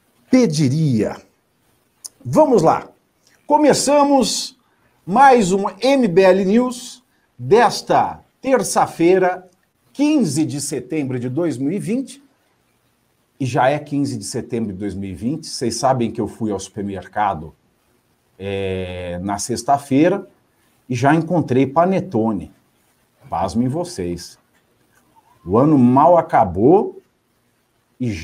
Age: 50-69